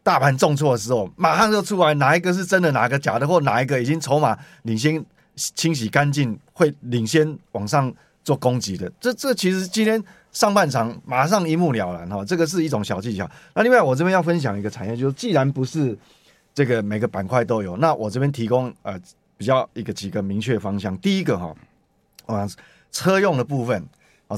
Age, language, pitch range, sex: 30-49, Chinese, 110-155 Hz, male